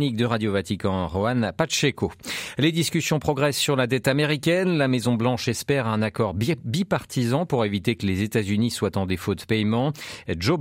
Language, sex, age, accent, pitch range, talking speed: French, male, 40-59, French, 105-140 Hz, 170 wpm